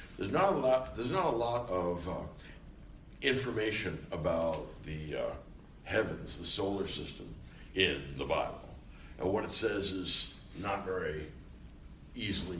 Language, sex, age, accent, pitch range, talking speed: English, male, 60-79, American, 75-105 Hz, 140 wpm